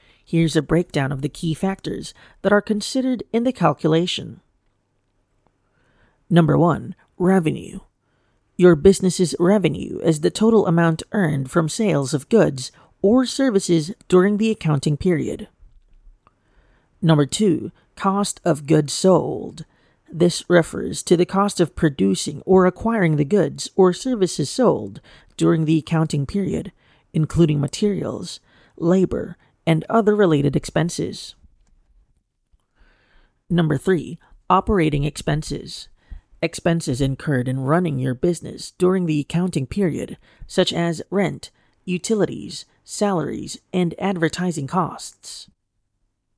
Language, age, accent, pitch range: English, 40-59, American, 150-190 Hz